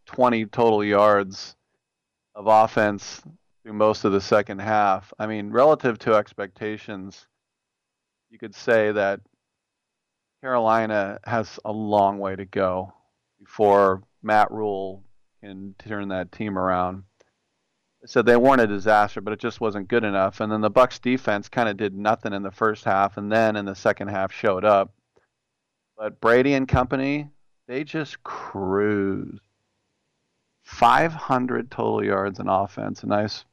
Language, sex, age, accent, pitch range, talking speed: English, male, 40-59, American, 100-110 Hz, 145 wpm